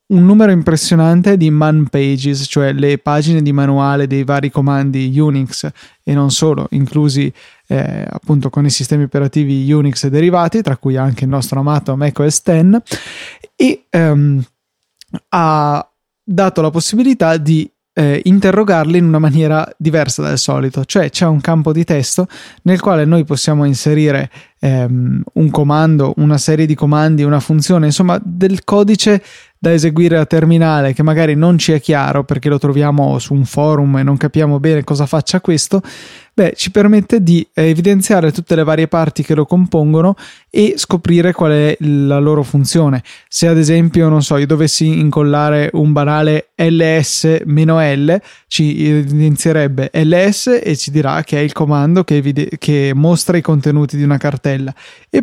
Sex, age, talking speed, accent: male, 20-39, 160 wpm, native